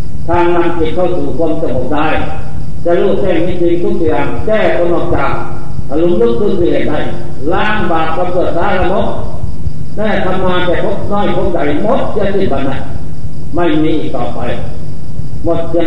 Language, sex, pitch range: Thai, male, 155-175 Hz